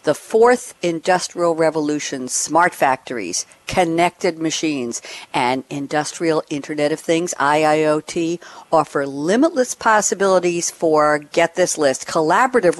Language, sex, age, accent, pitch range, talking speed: English, female, 60-79, American, 155-240 Hz, 105 wpm